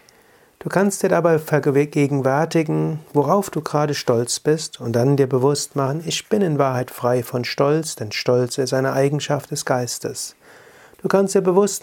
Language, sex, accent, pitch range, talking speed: German, male, German, 130-165 Hz, 165 wpm